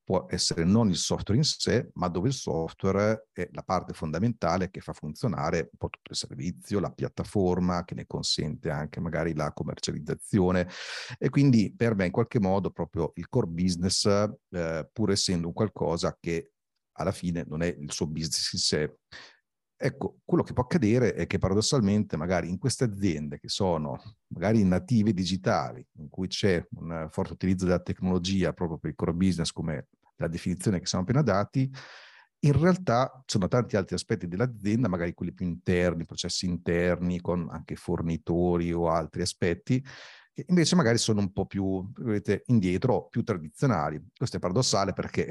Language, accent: Italian, native